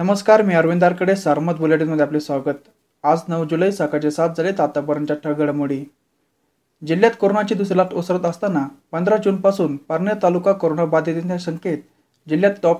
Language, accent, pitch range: Marathi, native, 155-195 Hz